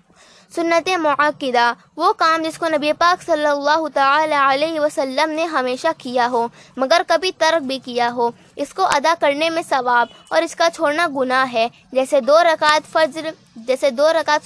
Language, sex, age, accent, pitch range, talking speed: Hindi, female, 20-39, native, 255-320 Hz, 160 wpm